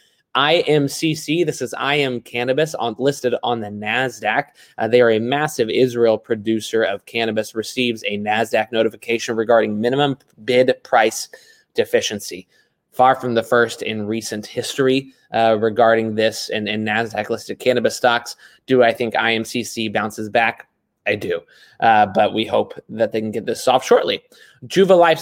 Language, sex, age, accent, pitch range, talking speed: English, male, 20-39, American, 115-145 Hz, 150 wpm